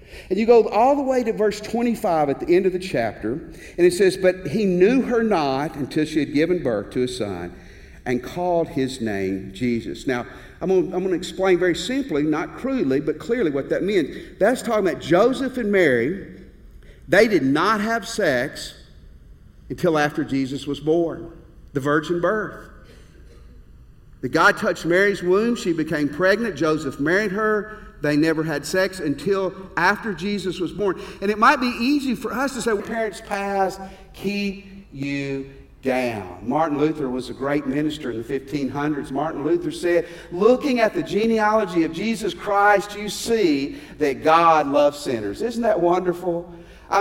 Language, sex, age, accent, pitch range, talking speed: English, male, 50-69, American, 140-215 Hz, 170 wpm